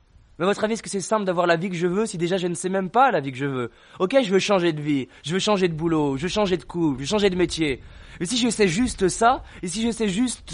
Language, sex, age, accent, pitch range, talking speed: French, male, 20-39, French, 145-195 Hz, 330 wpm